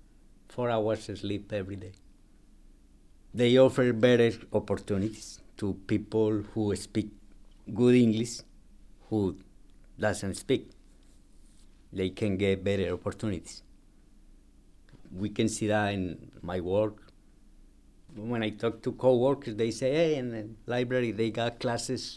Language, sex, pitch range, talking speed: English, male, 100-120 Hz, 120 wpm